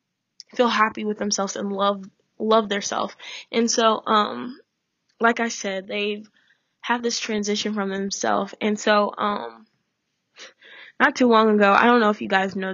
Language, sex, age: English, female, 10-29